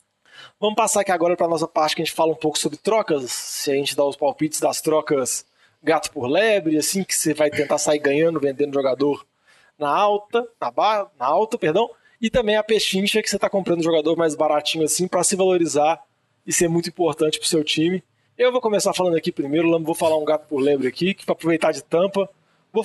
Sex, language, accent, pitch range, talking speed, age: male, Portuguese, Brazilian, 155-195 Hz, 220 wpm, 20-39